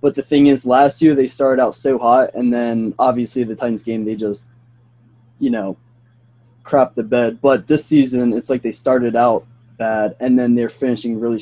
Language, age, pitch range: English, 20-39, 115-135 Hz